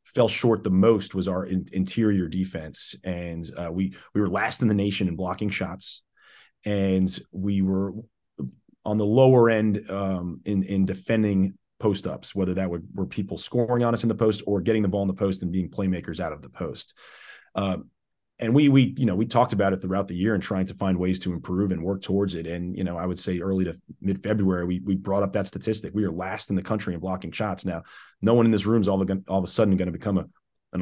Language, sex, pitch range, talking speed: English, male, 90-105 Hz, 240 wpm